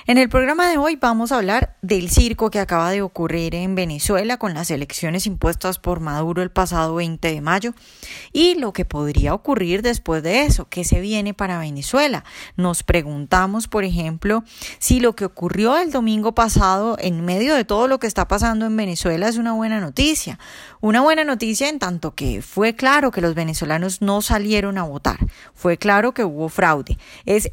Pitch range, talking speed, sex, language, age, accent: 170-240 Hz, 185 wpm, female, Spanish, 10-29, Colombian